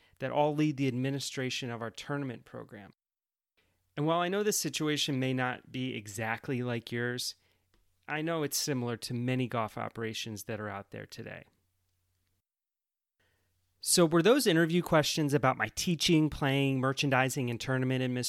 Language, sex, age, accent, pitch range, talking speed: English, male, 30-49, American, 110-145 Hz, 150 wpm